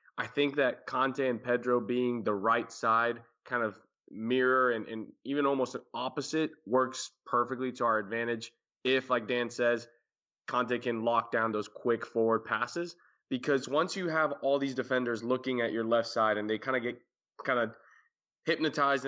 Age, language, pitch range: 20-39, English, 115-130 Hz